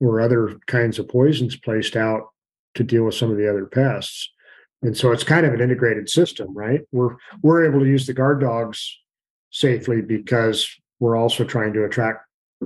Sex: male